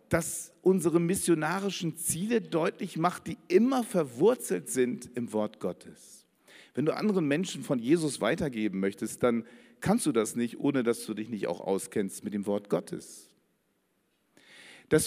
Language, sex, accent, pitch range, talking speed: German, male, German, 120-180 Hz, 150 wpm